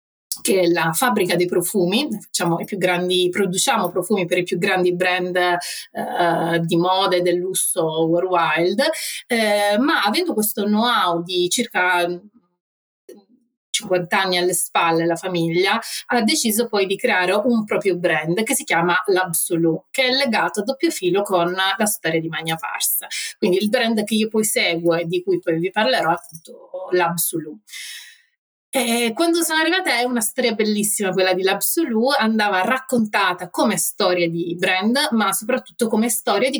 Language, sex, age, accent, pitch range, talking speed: Italian, female, 30-49, native, 180-220 Hz, 160 wpm